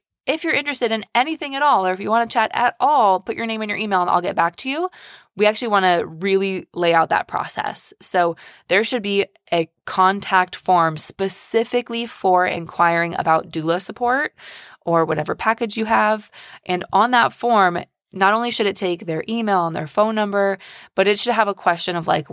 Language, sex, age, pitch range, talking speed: English, female, 20-39, 180-240 Hz, 205 wpm